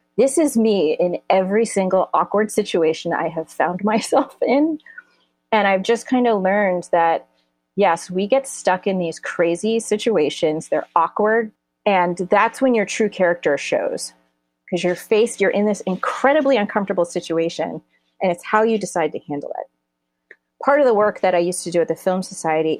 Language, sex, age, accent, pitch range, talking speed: English, female, 30-49, American, 170-240 Hz, 175 wpm